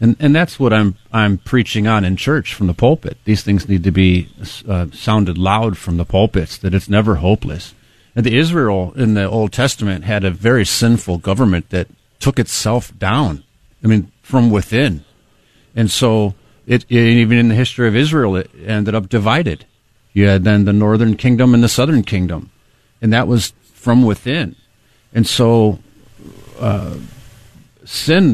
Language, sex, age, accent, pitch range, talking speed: English, male, 50-69, American, 100-125 Hz, 170 wpm